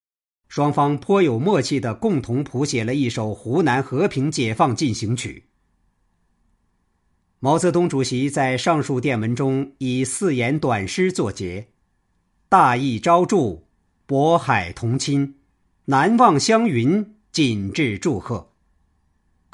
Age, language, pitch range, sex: 50-69, Chinese, 100-150 Hz, male